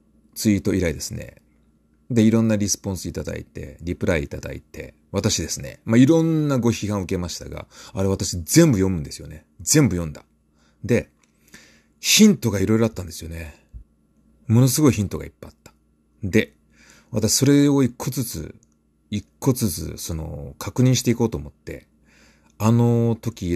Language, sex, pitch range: Japanese, male, 80-115 Hz